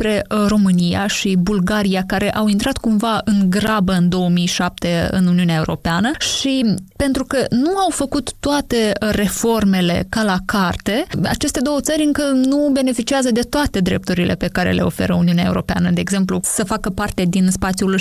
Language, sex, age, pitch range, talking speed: Romanian, female, 20-39, 185-240 Hz, 155 wpm